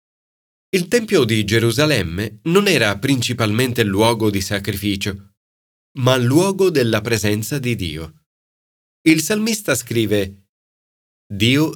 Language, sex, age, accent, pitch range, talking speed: Italian, male, 30-49, native, 100-145 Hz, 100 wpm